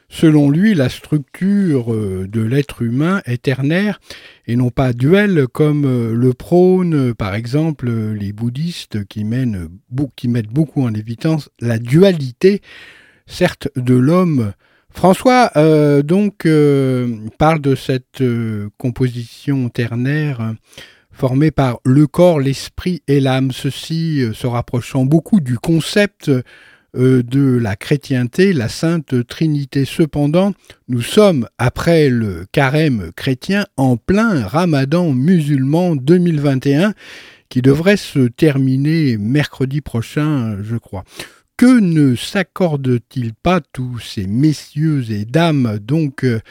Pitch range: 120-160 Hz